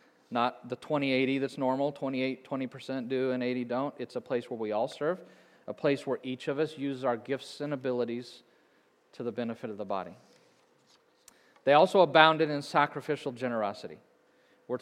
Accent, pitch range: American, 125-145 Hz